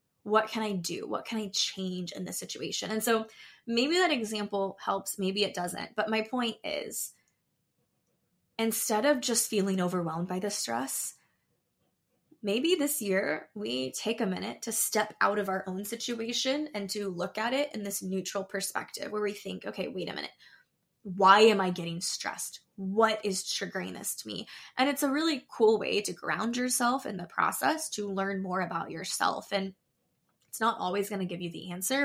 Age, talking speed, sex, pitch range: 10-29, 185 wpm, female, 190-230 Hz